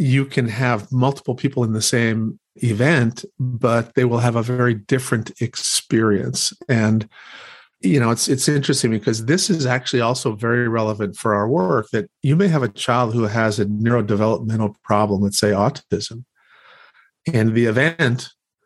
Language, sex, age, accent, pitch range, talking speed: English, male, 50-69, American, 110-130 Hz, 160 wpm